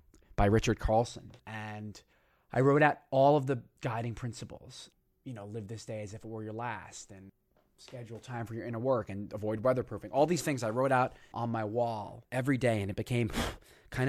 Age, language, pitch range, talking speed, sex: 20-39, English, 100-120 Hz, 205 wpm, male